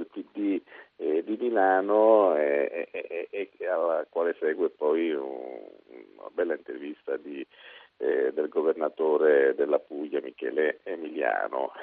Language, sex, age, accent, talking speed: Italian, male, 50-69, native, 90 wpm